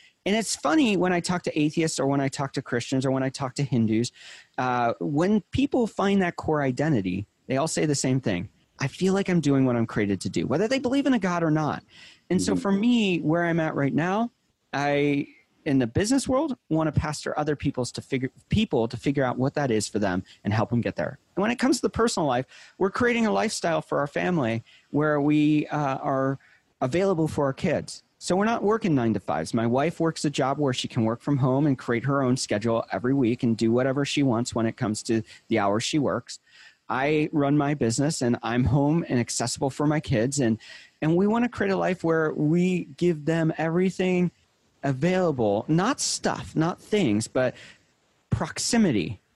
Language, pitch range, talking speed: English, 125-175 Hz, 220 wpm